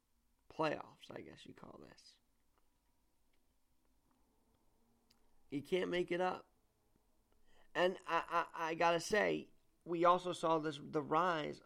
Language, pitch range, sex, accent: English, 145-185 Hz, male, American